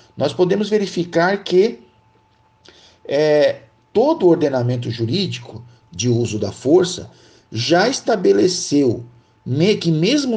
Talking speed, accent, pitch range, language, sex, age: 95 wpm, Brazilian, 115-170 Hz, Portuguese, male, 50-69